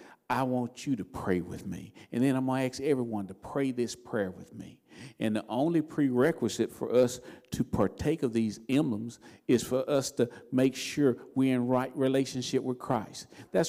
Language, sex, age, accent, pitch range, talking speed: English, male, 50-69, American, 115-145 Hz, 195 wpm